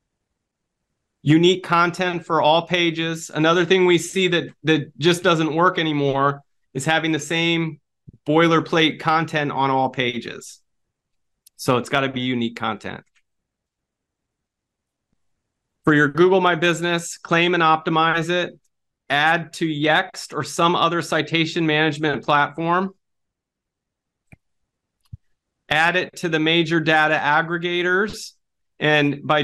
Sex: male